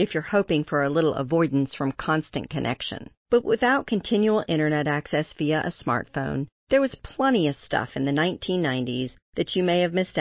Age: 40-59